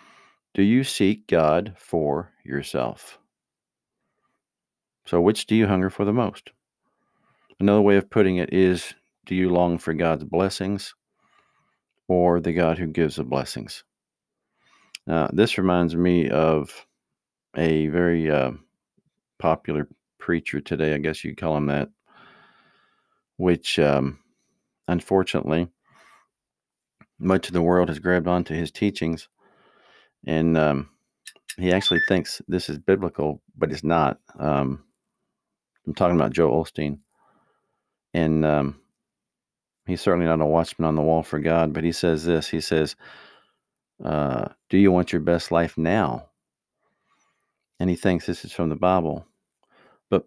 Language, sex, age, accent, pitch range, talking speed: English, male, 50-69, American, 80-90 Hz, 135 wpm